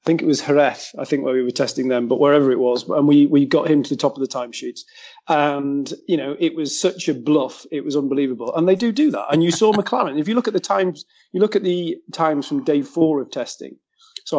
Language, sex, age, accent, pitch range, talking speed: English, male, 40-59, British, 140-175 Hz, 265 wpm